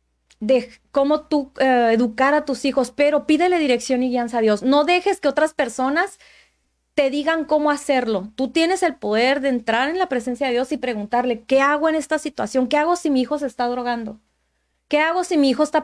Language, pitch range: Spanish, 240-295 Hz